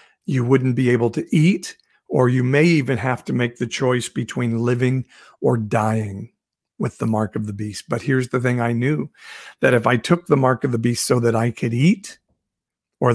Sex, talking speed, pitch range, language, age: male, 210 wpm, 110-130 Hz, English, 50-69